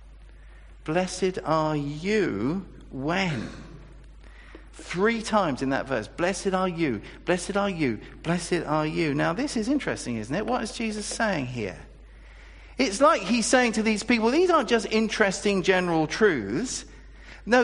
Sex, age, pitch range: male, 50-69, 130-220 Hz